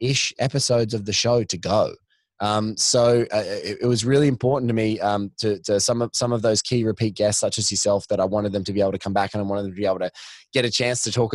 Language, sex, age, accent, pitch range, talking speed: English, male, 20-39, Australian, 105-125 Hz, 285 wpm